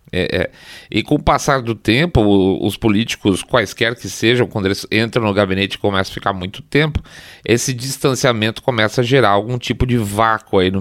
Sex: male